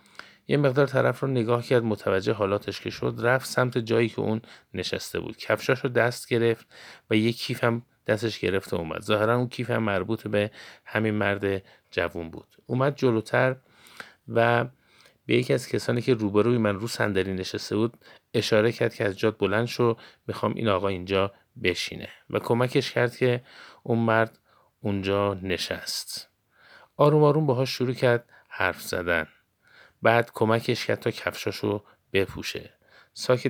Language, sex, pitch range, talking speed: Persian, male, 105-125 Hz, 155 wpm